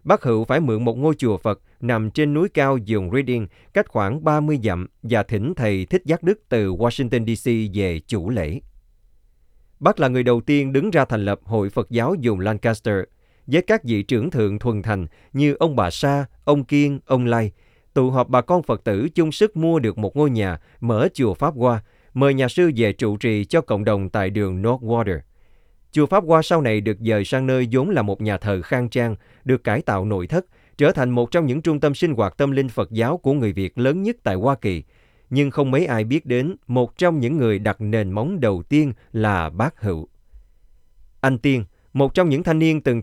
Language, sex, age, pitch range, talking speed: Vietnamese, male, 20-39, 105-145 Hz, 220 wpm